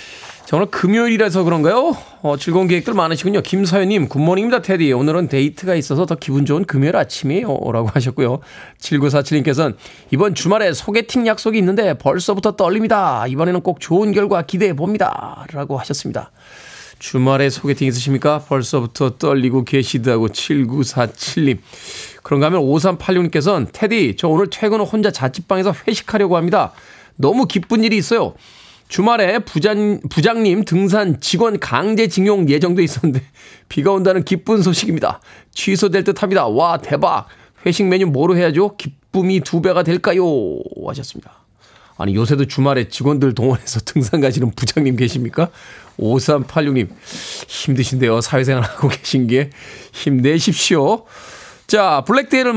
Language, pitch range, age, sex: Korean, 140-200 Hz, 20-39, male